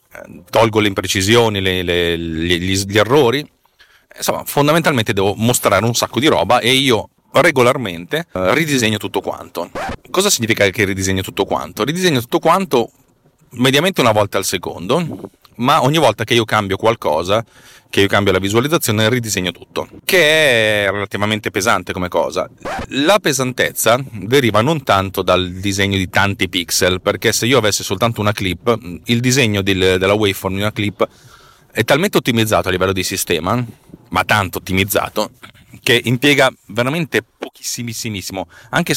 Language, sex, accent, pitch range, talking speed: Italian, male, native, 95-120 Hz, 150 wpm